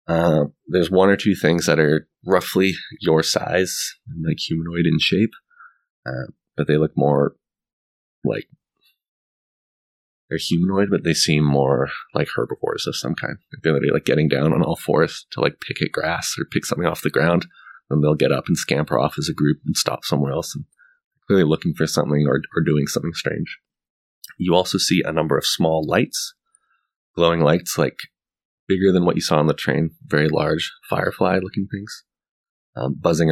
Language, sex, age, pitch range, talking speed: English, male, 30-49, 75-85 Hz, 180 wpm